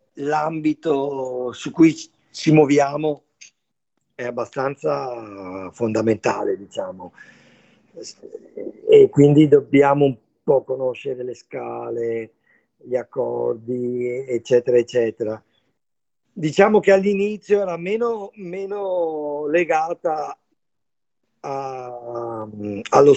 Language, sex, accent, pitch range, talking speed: Italian, male, native, 140-190 Hz, 75 wpm